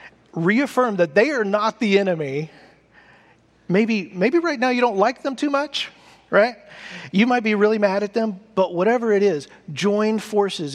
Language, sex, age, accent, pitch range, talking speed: English, male, 40-59, American, 165-220 Hz, 175 wpm